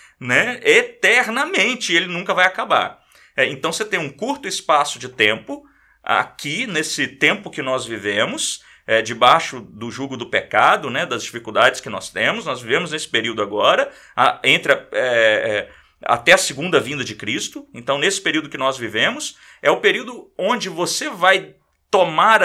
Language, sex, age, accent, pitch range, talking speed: Portuguese, male, 40-59, Brazilian, 125-185 Hz, 145 wpm